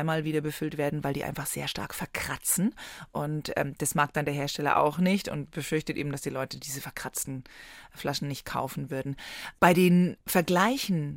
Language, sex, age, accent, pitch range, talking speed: German, female, 20-39, German, 145-180 Hz, 185 wpm